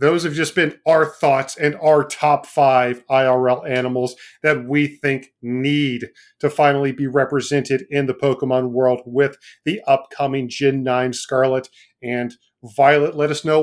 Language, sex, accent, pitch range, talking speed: English, male, American, 135-155 Hz, 155 wpm